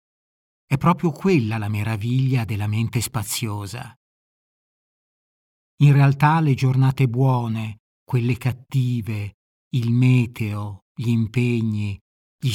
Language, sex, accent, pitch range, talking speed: Italian, male, native, 120-140 Hz, 95 wpm